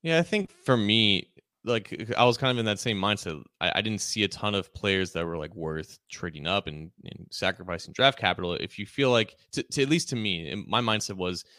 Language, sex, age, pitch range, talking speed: English, male, 20-39, 90-110 Hz, 240 wpm